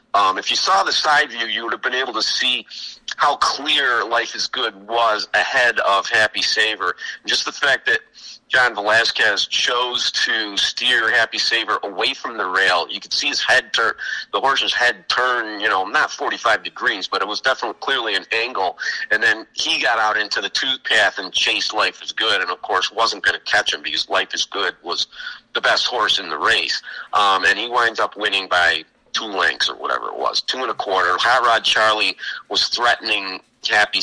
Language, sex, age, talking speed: English, male, 40-59, 205 wpm